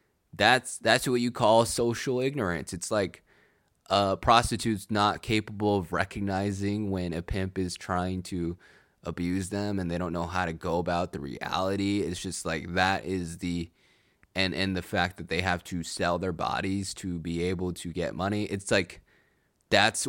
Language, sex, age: English, male, 20-39